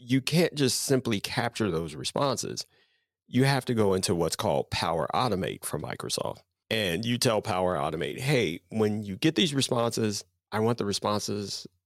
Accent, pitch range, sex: American, 100-125 Hz, male